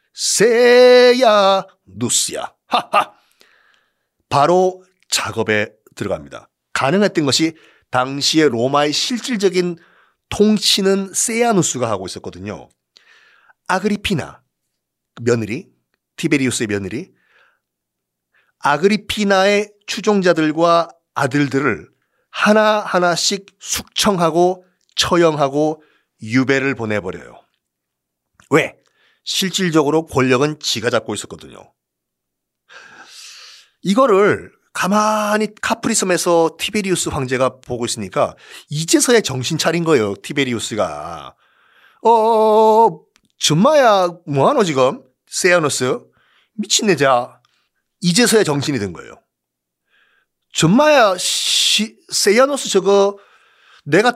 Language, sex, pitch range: Korean, male, 130-205 Hz